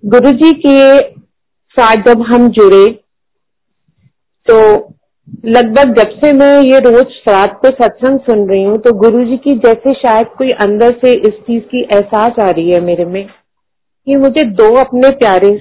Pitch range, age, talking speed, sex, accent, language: 200-260 Hz, 40-59, 165 wpm, female, native, Hindi